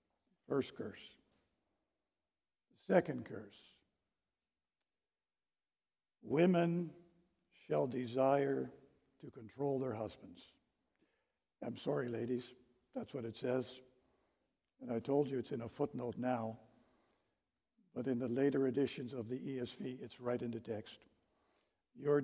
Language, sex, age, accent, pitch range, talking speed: English, male, 60-79, American, 120-145 Hz, 110 wpm